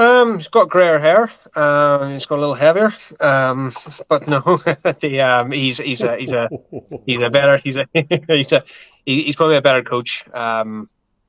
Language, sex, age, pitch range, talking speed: English, male, 20-39, 110-125 Hz, 190 wpm